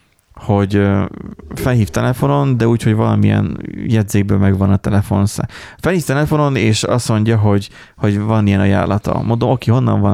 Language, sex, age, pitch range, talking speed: Hungarian, male, 30-49, 100-125 Hz, 150 wpm